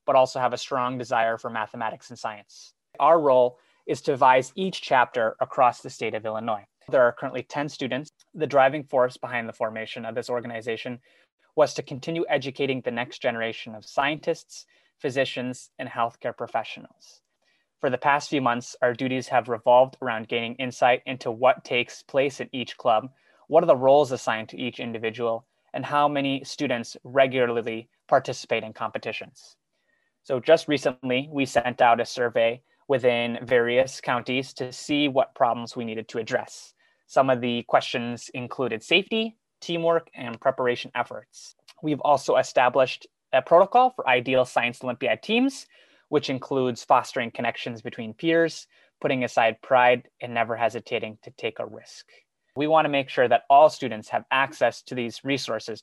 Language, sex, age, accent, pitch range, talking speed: English, male, 20-39, American, 120-140 Hz, 160 wpm